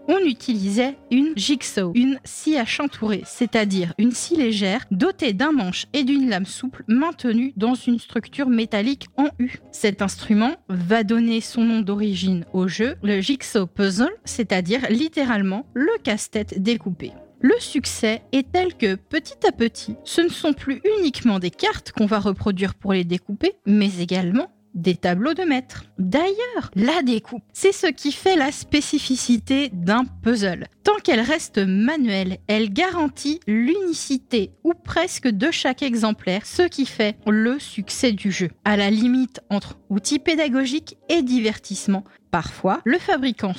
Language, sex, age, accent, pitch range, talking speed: French, female, 30-49, French, 205-285 Hz, 155 wpm